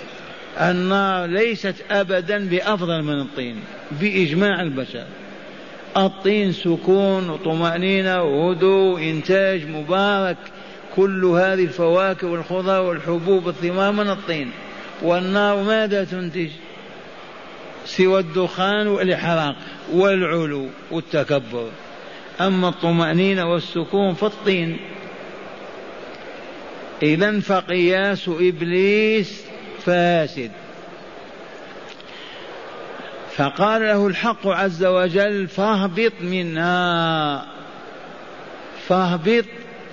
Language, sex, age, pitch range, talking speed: Arabic, male, 50-69, 165-195 Hz, 70 wpm